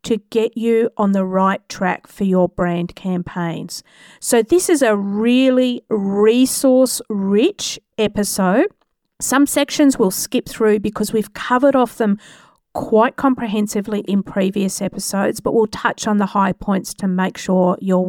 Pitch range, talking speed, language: 185-230 Hz, 145 wpm, English